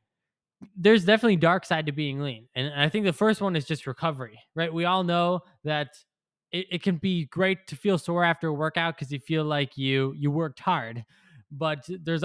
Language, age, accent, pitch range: English, 20-39, American, 135-175 Hz